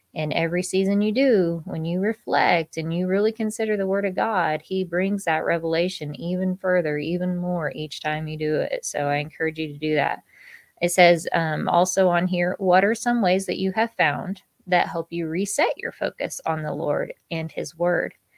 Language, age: English, 20-39